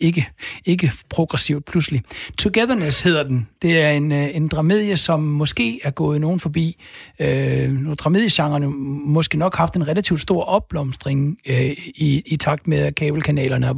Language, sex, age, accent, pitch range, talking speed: Danish, male, 60-79, native, 135-165 Hz, 150 wpm